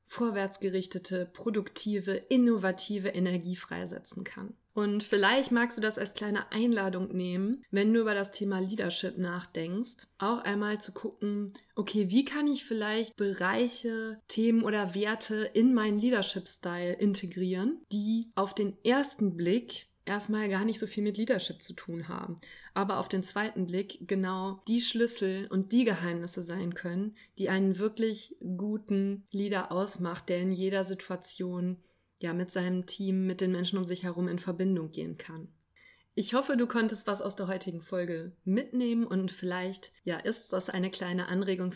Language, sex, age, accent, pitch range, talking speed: German, female, 20-39, German, 185-215 Hz, 155 wpm